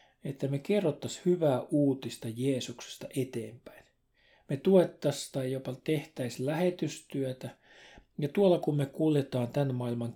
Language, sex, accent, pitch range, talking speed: Finnish, male, native, 125-155 Hz, 120 wpm